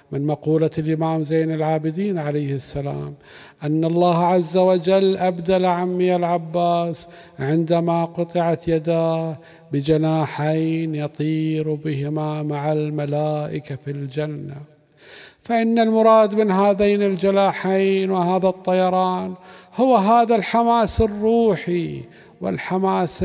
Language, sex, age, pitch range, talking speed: Arabic, male, 50-69, 145-190 Hz, 95 wpm